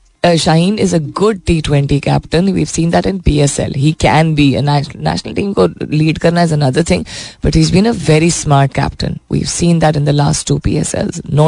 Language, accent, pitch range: Hindi, native, 145-170 Hz